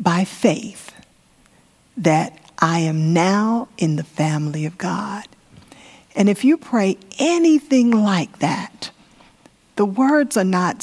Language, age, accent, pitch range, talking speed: English, 50-69, American, 180-215 Hz, 120 wpm